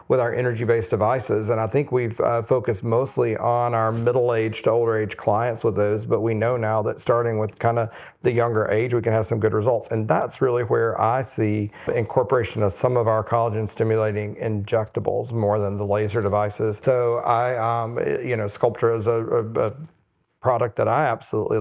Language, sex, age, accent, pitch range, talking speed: English, male, 40-59, American, 105-120 Hz, 190 wpm